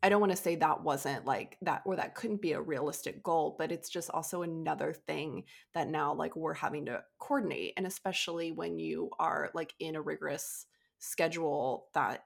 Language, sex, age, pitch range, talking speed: English, female, 20-39, 155-190 Hz, 195 wpm